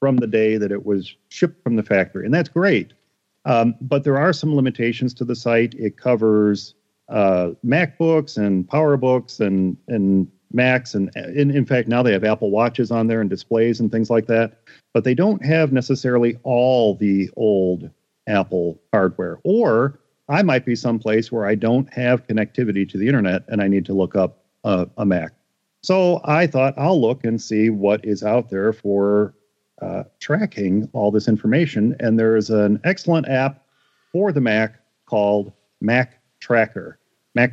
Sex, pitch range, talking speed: male, 105-135 Hz, 175 wpm